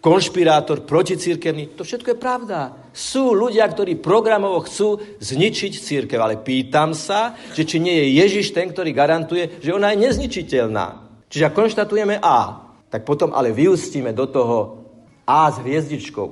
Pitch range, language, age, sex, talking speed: 120-170 Hz, Slovak, 50-69, male, 150 wpm